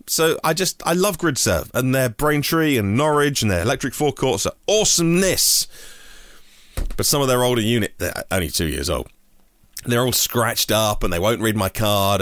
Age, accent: 30-49, British